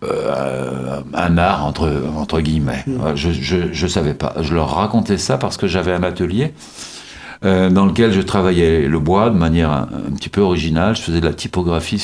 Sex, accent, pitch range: male, French, 75-95 Hz